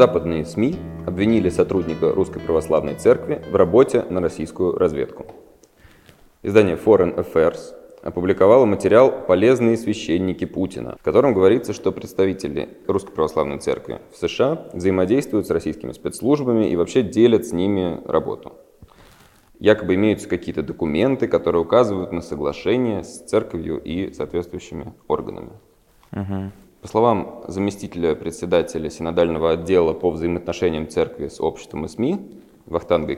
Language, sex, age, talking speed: Russian, male, 20-39, 120 wpm